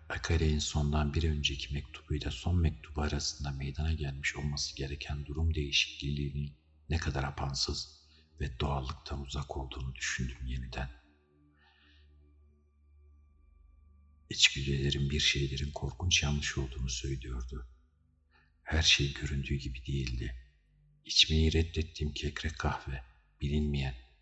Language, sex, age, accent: Turkish, male, 50-69, native